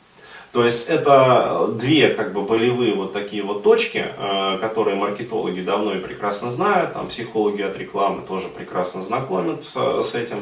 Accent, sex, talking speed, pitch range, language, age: native, male, 140 wpm, 100-120 Hz, Russian, 20-39